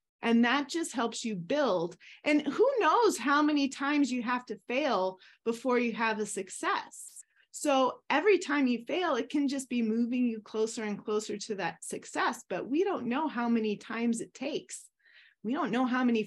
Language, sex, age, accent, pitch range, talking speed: English, female, 30-49, American, 210-265 Hz, 190 wpm